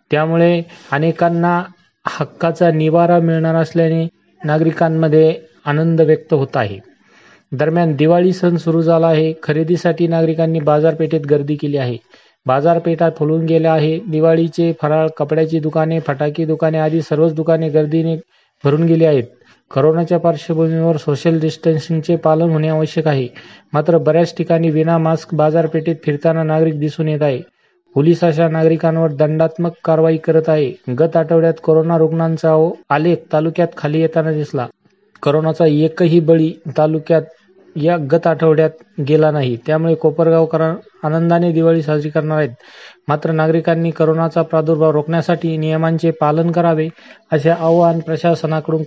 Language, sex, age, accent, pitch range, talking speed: Marathi, male, 30-49, native, 155-165 Hz, 125 wpm